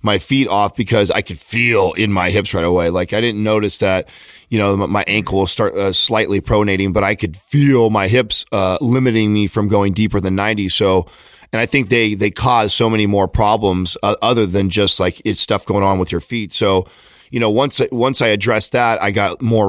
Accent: American